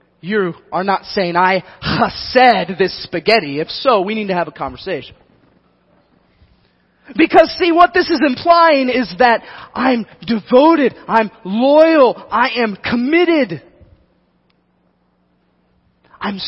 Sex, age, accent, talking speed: male, 30-49, American, 120 wpm